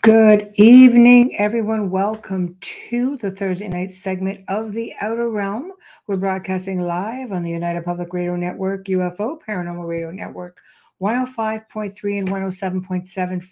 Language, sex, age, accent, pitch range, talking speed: English, female, 60-79, American, 185-220 Hz, 130 wpm